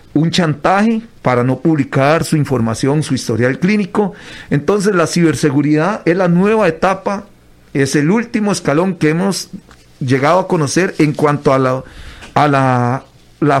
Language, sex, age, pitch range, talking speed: Spanish, male, 40-59, 135-180 Hz, 145 wpm